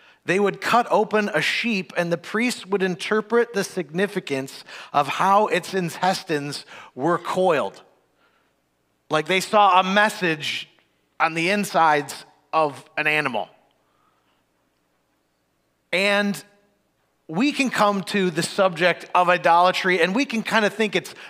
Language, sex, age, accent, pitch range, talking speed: English, male, 30-49, American, 155-205 Hz, 130 wpm